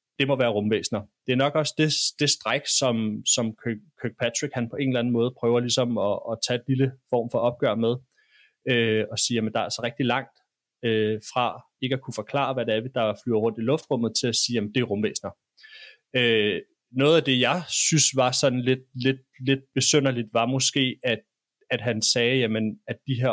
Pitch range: 110-135 Hz